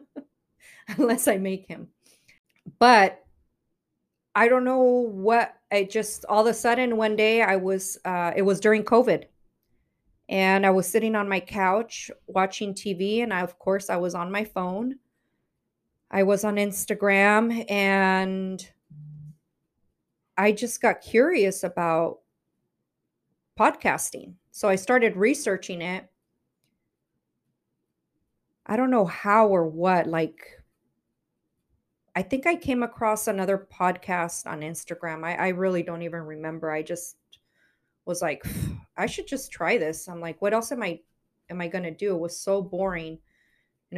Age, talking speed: 30-49, 145 wpm